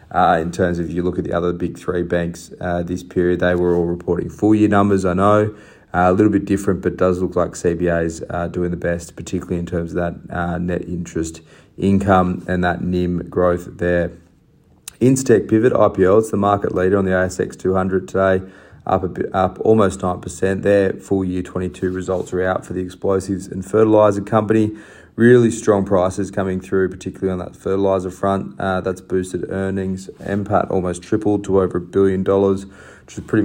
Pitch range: 90-100 Hz